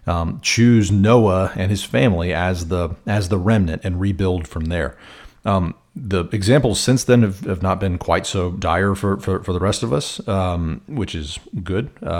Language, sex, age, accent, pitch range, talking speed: English, male, 40-59, American, 95-110 Hz, 185 wpm